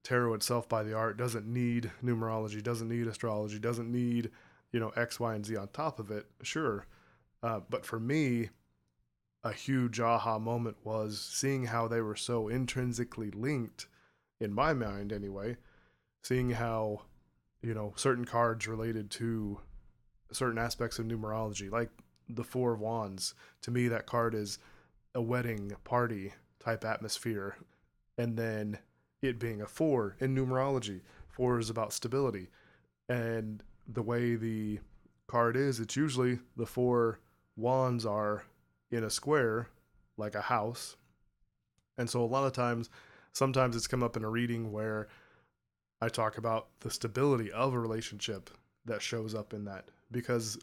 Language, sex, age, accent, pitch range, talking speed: English, male, 20-39, American, 105-120 Hz, 155 wpm